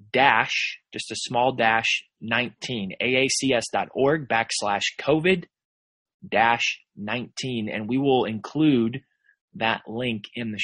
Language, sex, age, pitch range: English, male, 20-39, 120-170 Hz